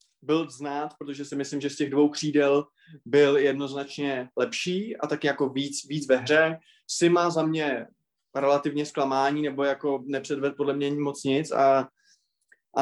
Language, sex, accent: Czech, male, native